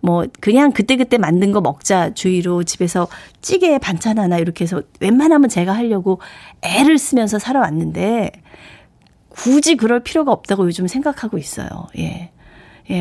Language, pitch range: Korean, 185-270 Hz